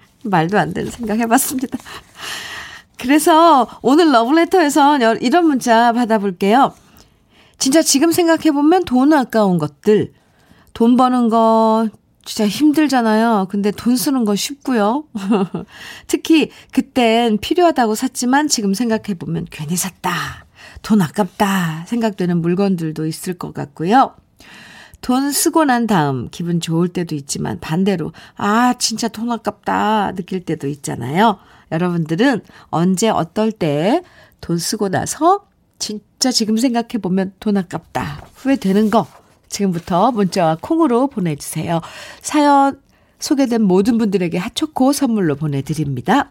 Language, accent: Korean, native